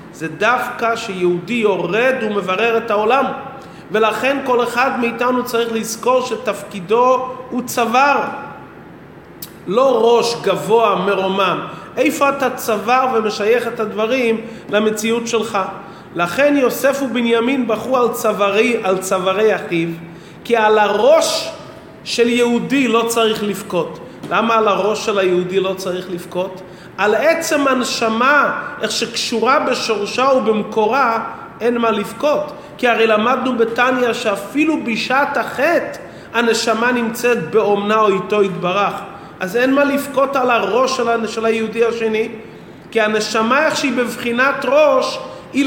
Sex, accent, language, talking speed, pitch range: male, native, Hebrew, 120 wpm, 210-255 Hz